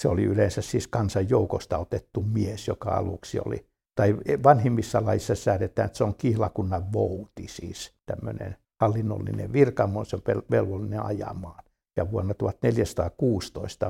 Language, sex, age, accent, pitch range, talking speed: Finnish, male, 60-79, native, 95-110 Hz, 120 wpm